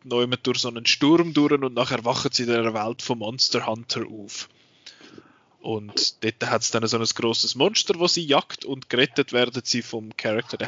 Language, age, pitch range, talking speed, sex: German, 20-39, 115-135 Hz, 200 wpm, male